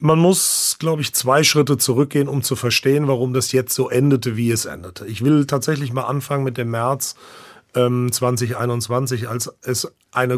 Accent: German